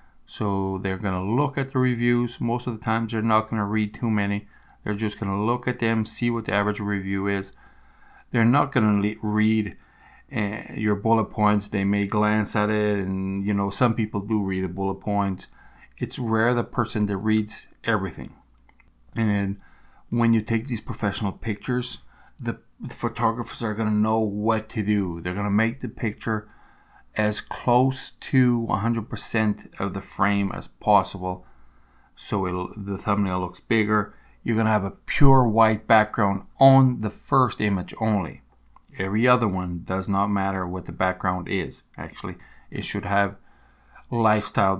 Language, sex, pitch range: English, male, 100-115 Hz